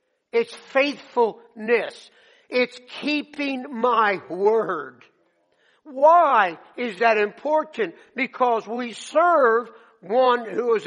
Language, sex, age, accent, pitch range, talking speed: English, male, 60-79, American, 205-265 Hz, 90 wpm